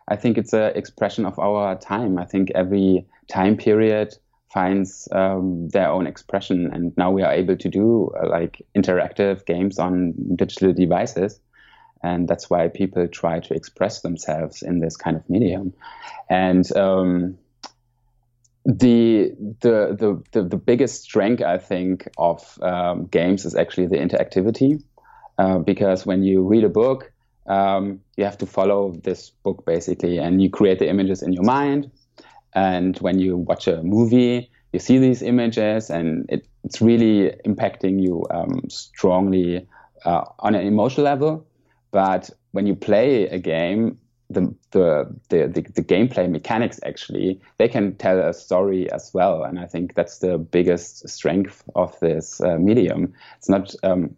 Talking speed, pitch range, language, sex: 160 wpm, 90-110 Hz, English, male